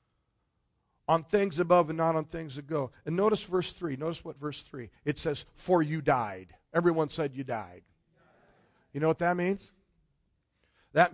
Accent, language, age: American, English, 50-69